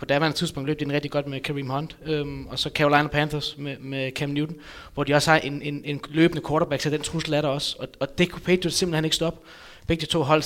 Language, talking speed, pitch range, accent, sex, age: Danish, 270 wpm, 135-155 Hz, native, male, 20-39